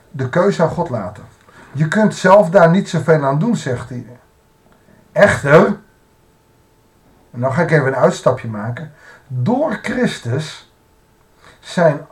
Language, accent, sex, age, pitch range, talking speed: Dutch, Dutch, male, 50-69, 125-165 Hz, 135 wpm